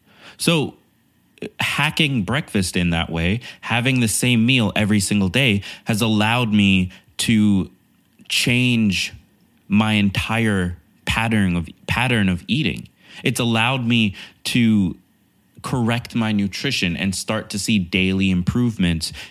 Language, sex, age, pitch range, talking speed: English, male, 20-39, 90-110 Hz, 120 wpm